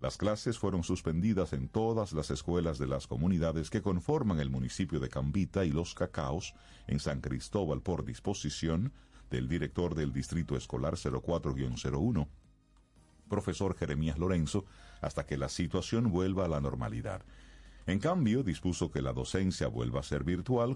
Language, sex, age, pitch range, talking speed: Spanish, male, 50-69, 75-95 Hz, 150 wpm